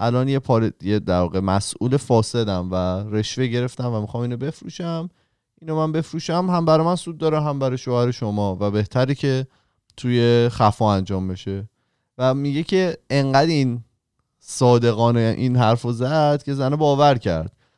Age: 20-39